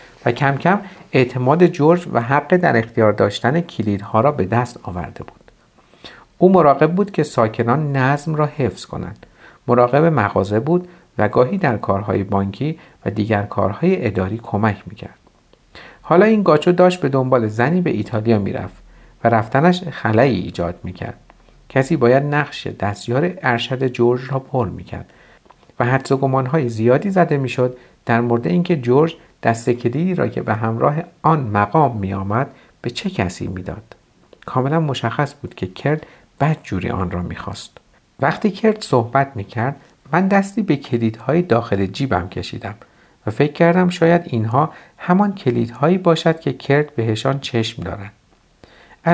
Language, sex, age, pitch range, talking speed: Persian, male, 50-69, 110-160 Hz, 145 wpm